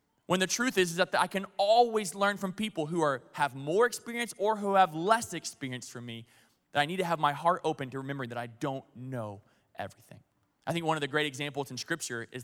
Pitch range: 125-165 Hz